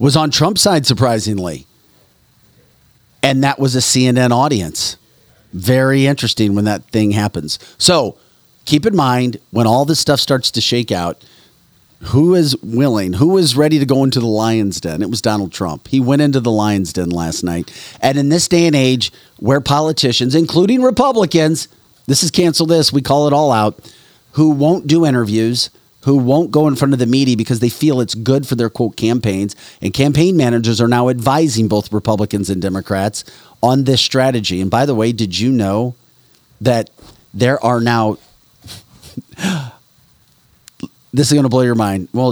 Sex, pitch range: male, 105-140 Hz